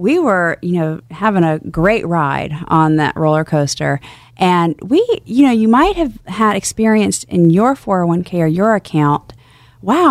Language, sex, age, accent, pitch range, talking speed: English, female, 40-59, American, 150-200 Hz, 165 wpm